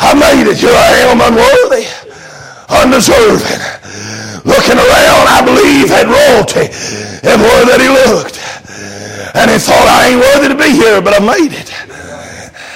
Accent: American